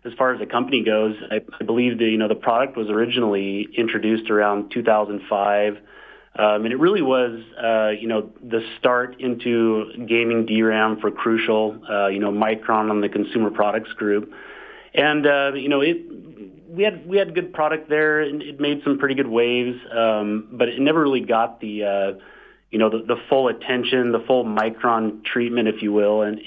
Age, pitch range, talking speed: 30-49, 105-120 Hz, 190 wpm